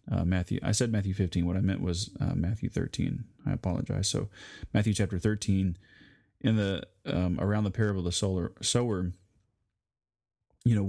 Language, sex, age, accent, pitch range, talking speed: English, male, 30-49, American, 90-105 Hz, 170 wpm